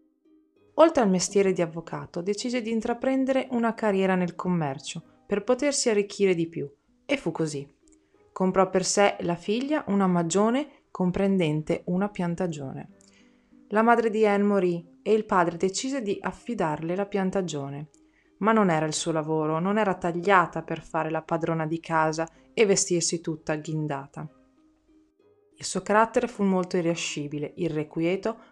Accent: native